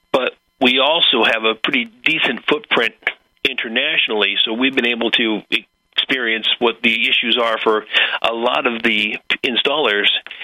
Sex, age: male, 40-59